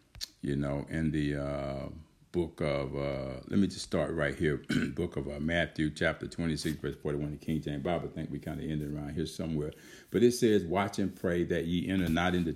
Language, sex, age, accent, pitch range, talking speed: English, male, 50-69, American, 80-95 Hz, 220 wpm